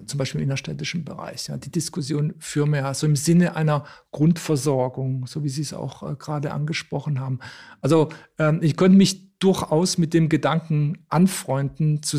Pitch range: 150-180 Hz